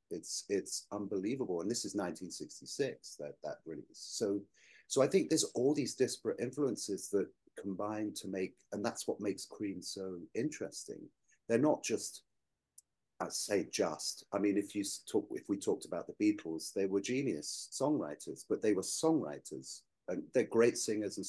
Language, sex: English, male